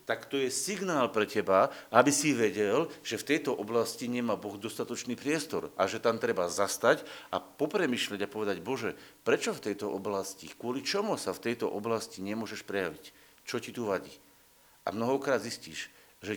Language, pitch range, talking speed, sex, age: Slovak, 105-140 Hz, 170 wpm, male, 50-69